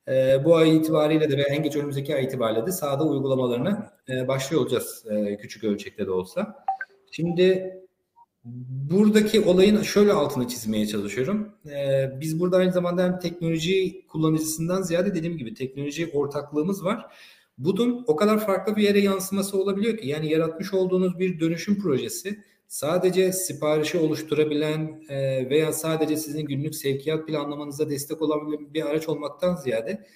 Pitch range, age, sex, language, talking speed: 145-185 Hz, 40-59, male, Turkish, 145 wpm